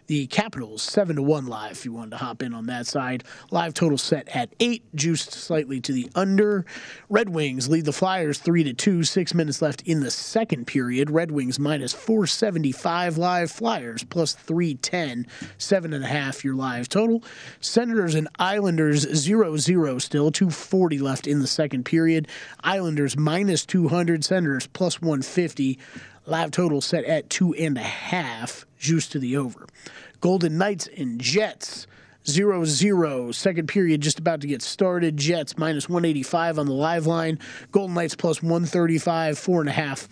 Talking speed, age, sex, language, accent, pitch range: 145 wpm, 30-49, male, English, American, 140-175 Hz